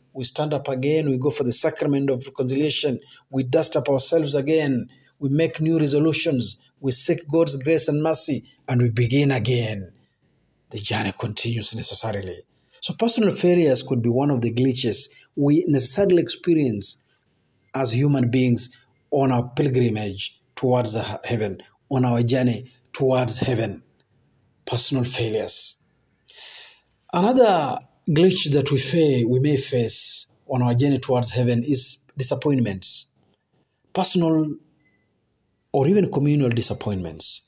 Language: Swahili